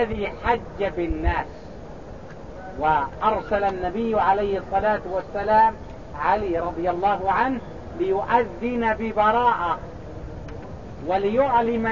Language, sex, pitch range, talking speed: English, male, 180-225 Hz, 75 wpm